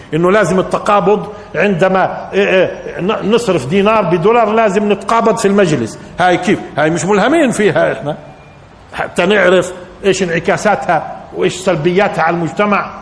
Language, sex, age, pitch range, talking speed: Arabic, male, 50-69, 180-250 Hz, 130 wpm